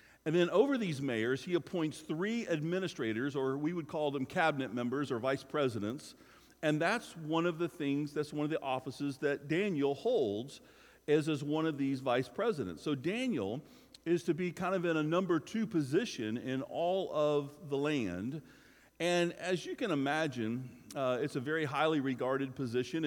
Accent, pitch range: American, 135-170 Hz